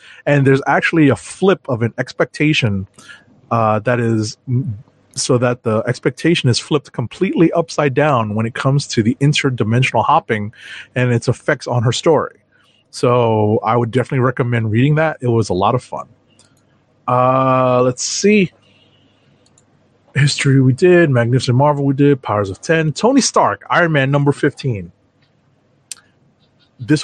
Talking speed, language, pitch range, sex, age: 145 wpm, English, 120-145 Hz, male, 30-49